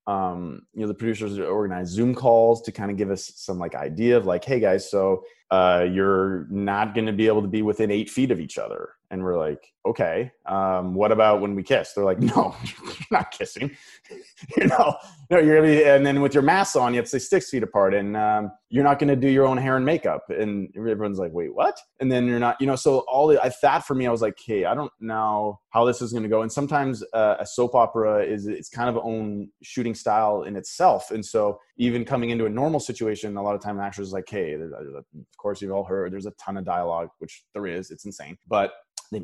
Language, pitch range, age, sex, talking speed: English, 100-120 Hz, 20-39, male, 245 wpm